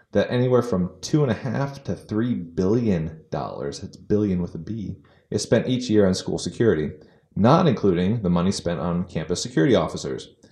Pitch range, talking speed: 90-115 Hz, 185 wpm